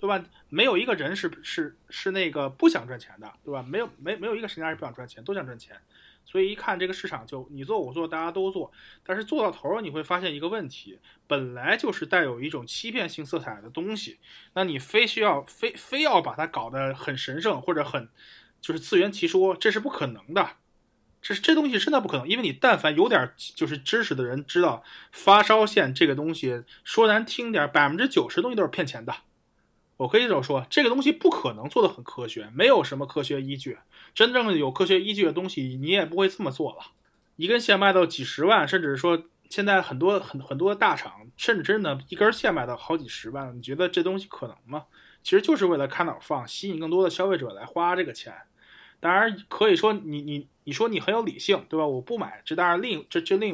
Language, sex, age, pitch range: Chinese, male, 20-39, 150-220 Hz